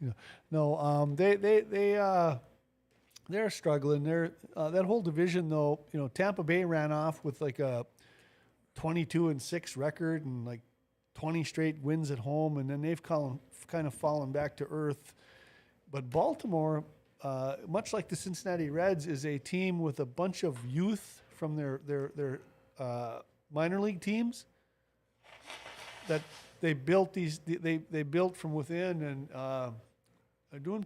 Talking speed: 155 wpm